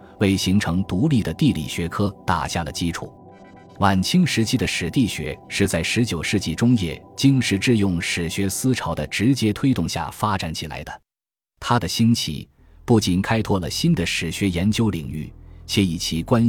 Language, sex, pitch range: Chinese, male, 85-115 Hz